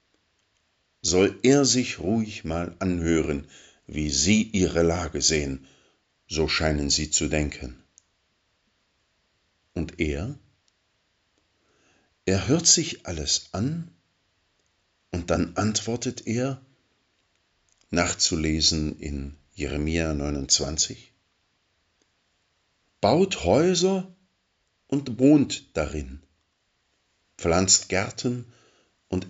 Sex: male